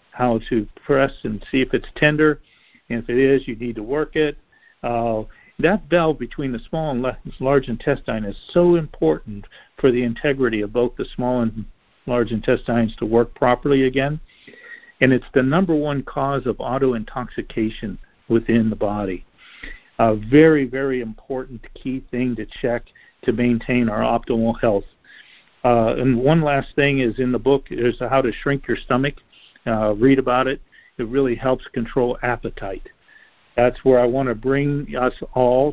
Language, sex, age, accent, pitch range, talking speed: English, male, 50-69, American, 115-140 Hz, 165 wpm